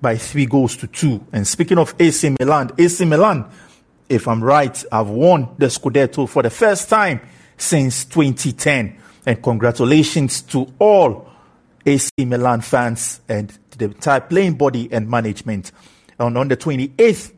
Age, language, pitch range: 50-69, English, 120-155 Hz